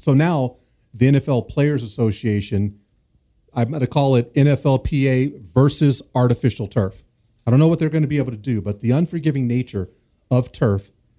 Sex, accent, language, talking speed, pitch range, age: male, American, English, 170 wpm, 120-150 Hz, 40-59